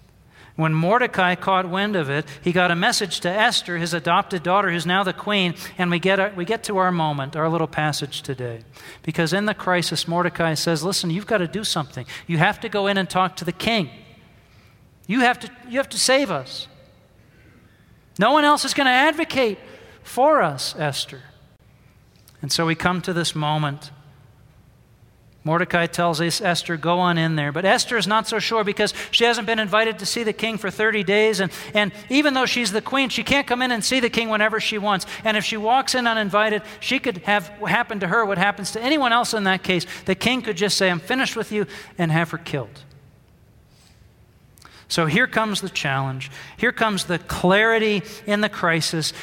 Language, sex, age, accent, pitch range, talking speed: English, male, 40-59, American, 165-220 Hz, 205 wpm